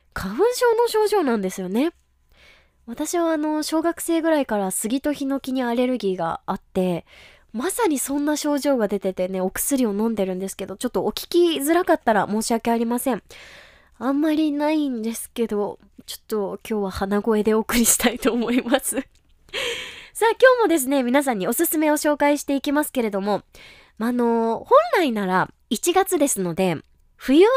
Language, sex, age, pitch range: Japanese, female, 20-39, 205-320 Hz